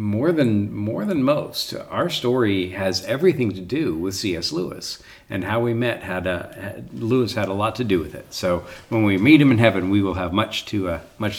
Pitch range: 95-115 Hz